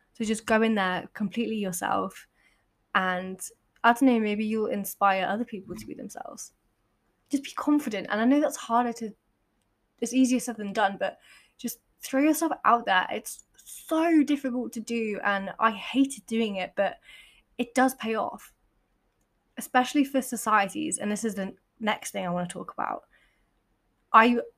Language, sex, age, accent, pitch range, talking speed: English, female, 10-29, British, 200-240 Hz, 170 wpm